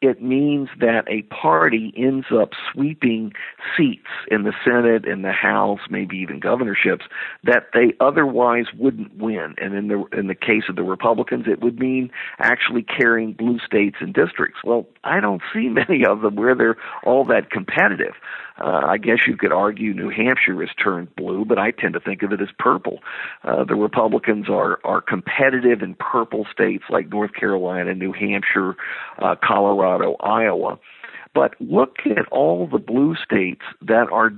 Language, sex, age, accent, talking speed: English, male, 50-69, American, 170 wpm